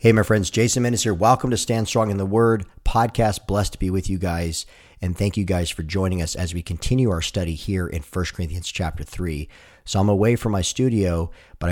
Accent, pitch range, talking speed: American, 85-110 Hz, 230 wpm